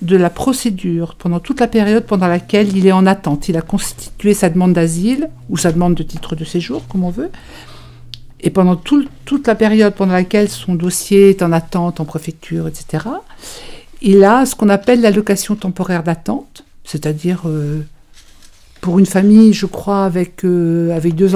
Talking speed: 180 wpm